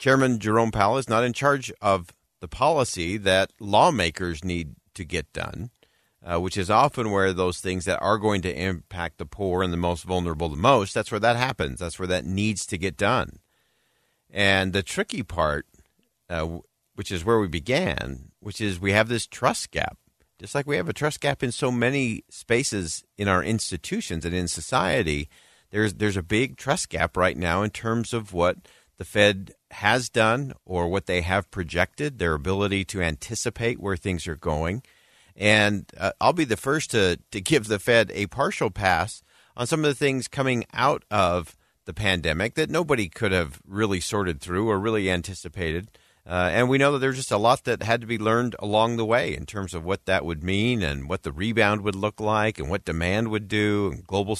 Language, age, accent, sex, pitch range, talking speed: English, 50-69, American, male, 90-115 Hz, 200 wpm